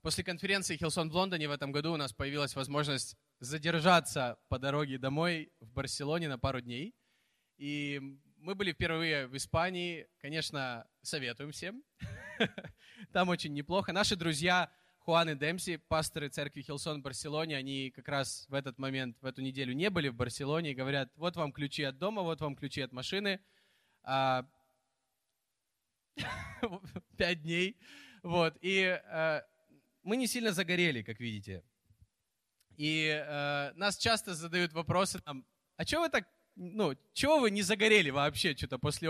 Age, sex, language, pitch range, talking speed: 20-39, male, Russian, 140-195 Hz, 145 wpm